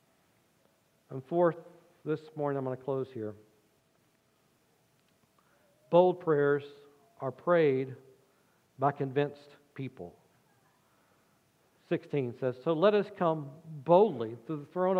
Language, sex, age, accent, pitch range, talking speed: English, male, 50-69, American, 160-255 Hz, 105 wpm